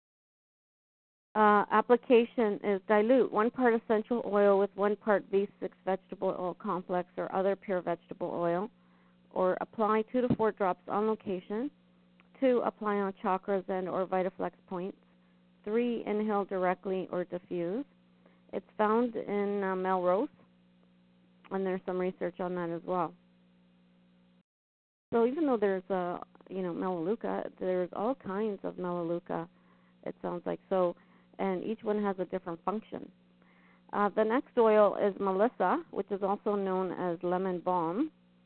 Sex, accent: female, American